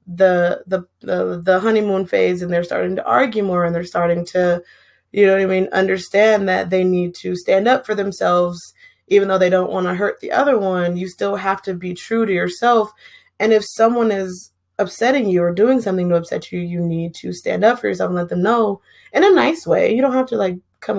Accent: American